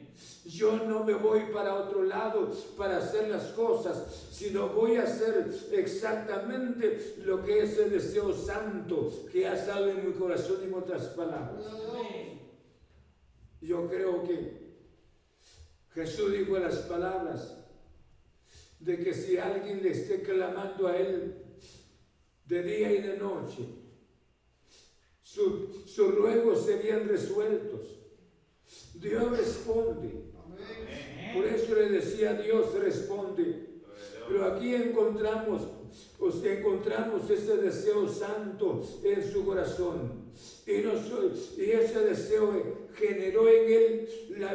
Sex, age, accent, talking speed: male, 60-79, Mexican, 115 wpm